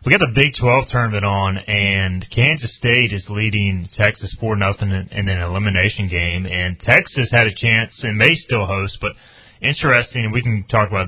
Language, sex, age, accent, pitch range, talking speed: English, male, 30-49, American, 95-120 Hz, 190 wpm